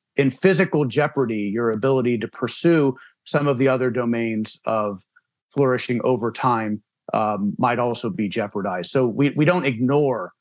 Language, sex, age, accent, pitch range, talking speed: English, male, 40-59, American, 115-145 Hz, 150 wpm